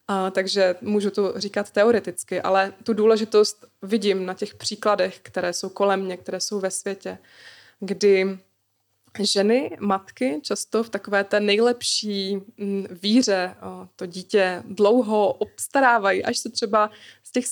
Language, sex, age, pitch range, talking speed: Czech, female, 20-39, 190-220 Hz, 130 wpm